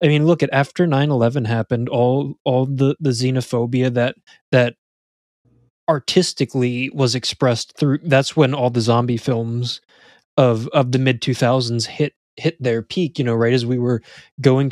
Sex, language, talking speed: male, English, 165 wpm